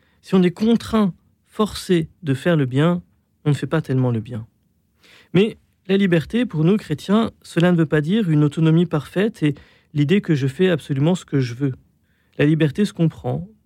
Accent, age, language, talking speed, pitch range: French, 40-59, French, 195 wpm, 145-185 Hz